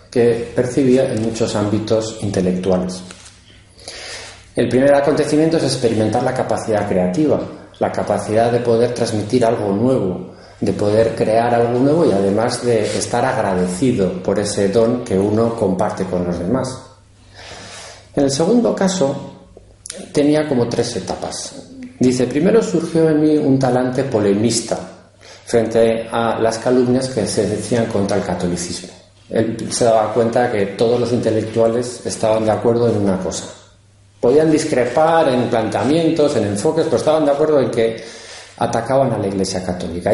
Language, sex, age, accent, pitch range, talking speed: Spanish, male, 40-59, Spanish, 100-140 Hz, 145 wpm